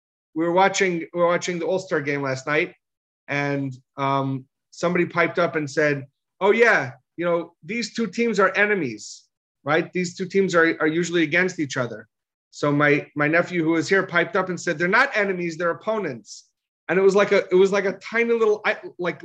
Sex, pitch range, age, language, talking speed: male, 160-210 Hz, 30-49, English, 205 wpm